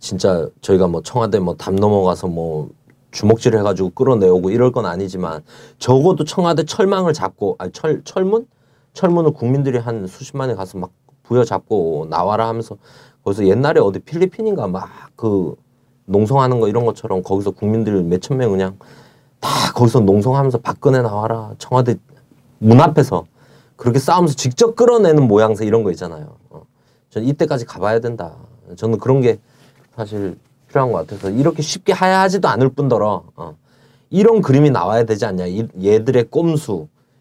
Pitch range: 110-150 Hz